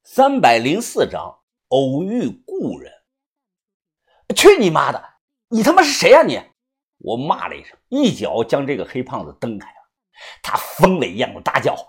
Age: 50-69